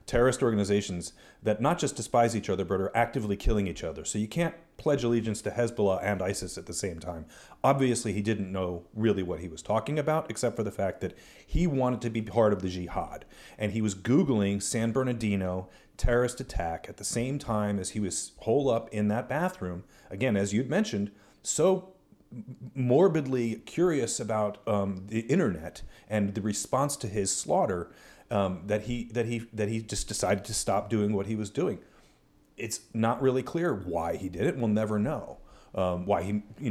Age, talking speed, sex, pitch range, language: 40-59, 195 wpm, male, 100-120 Hz, English